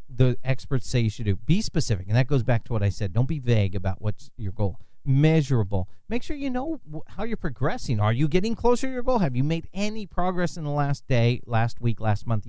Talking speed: 245 wpm